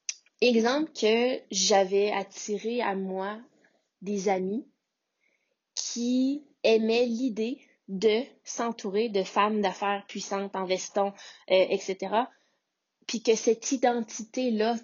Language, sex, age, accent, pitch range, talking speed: French, female, 20-39, Canadian, 195-240 Hz, 100 wpm